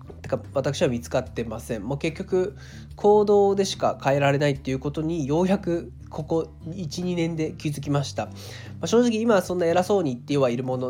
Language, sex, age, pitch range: Japanese, male, 20-39, 130-185 Hz